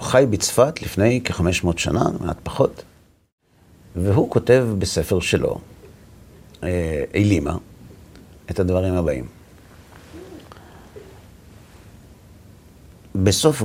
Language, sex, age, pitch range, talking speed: Hebrew, male, 50-69, 85-110 Hz, 75 wpm